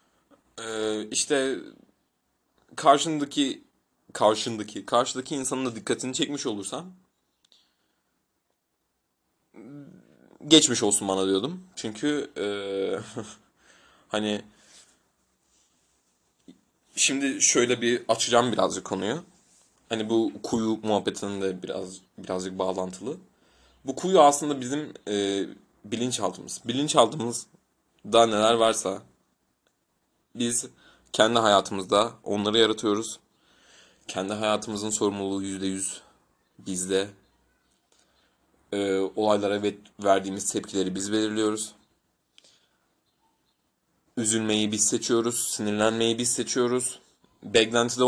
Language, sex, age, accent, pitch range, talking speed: Turkish, male, 30-49, native, 100-125 Hz, 80 wpm